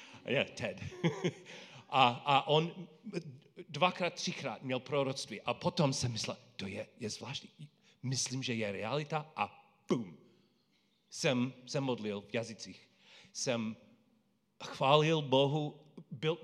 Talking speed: 115 wpm